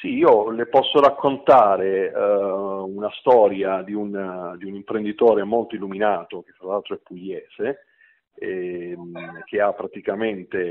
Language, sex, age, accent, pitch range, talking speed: Italian, male, 40-59, native, 95-125 Hz, 145 wpm